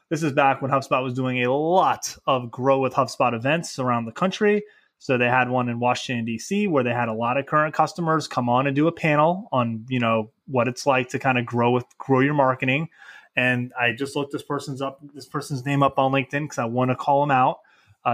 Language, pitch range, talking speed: English, 125-150 Hz, 240 wpm